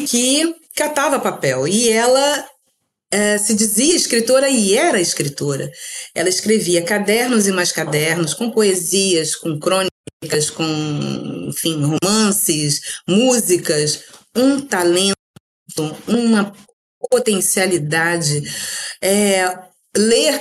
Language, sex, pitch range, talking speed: Portuguese, female, 170-225 Hz, 95 wpm